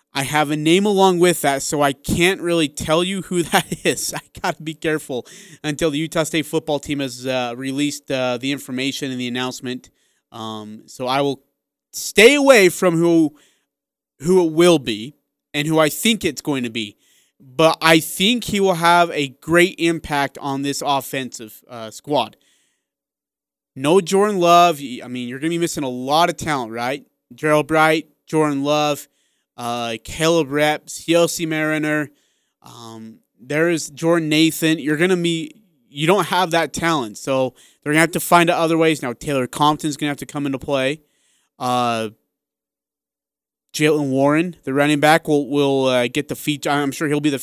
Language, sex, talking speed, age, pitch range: English, male, 180 wpm, 30-49, 135-165 Hz